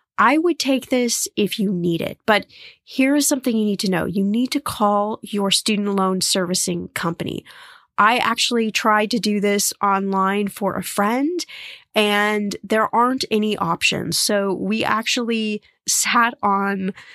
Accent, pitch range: American, 200-250 Hz